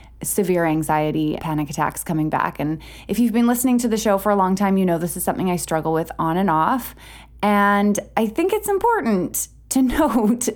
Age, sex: 20-39, female